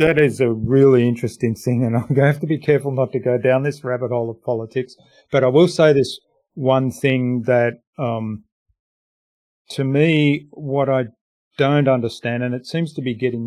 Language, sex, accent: English, male, Australian